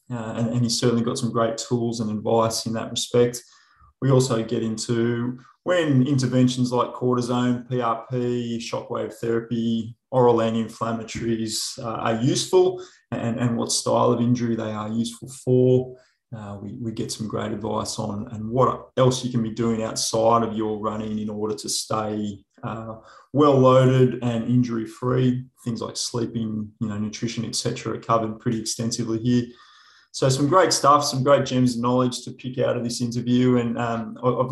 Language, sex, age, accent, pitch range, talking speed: English, male, 20-39, Australian, 115-125 Hz, 165 wpm